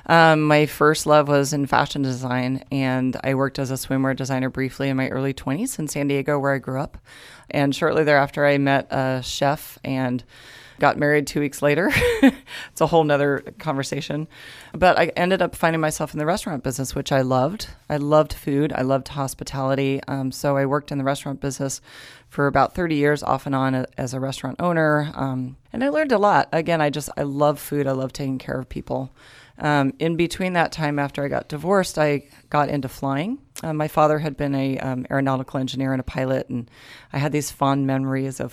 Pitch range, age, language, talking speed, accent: 135-155 Hz, 30-49, English, 205 wpm, American